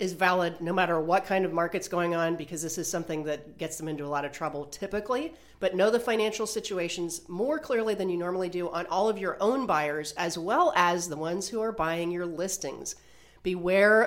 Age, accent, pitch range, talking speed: 40-59, American, 165-195 Hz, 220 wpm